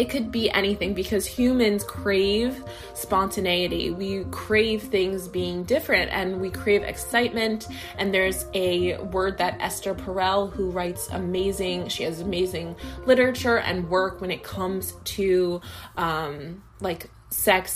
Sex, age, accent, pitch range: female, 20-39, American, 155-205 Hz